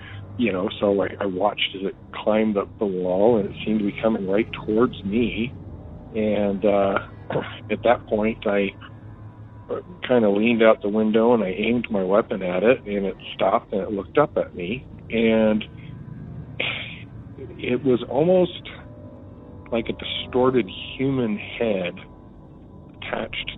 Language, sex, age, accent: English, male, 50-69, American